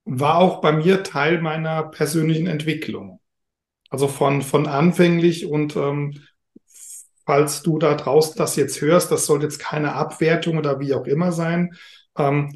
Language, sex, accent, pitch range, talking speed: German, male, German, 150-180 Hz, 155 wpm